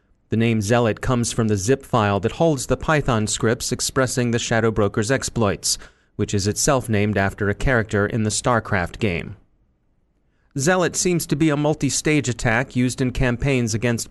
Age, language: 30-49, English